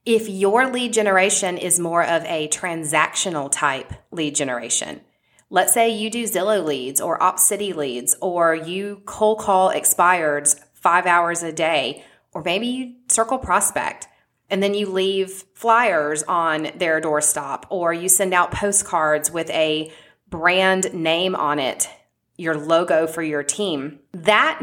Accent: American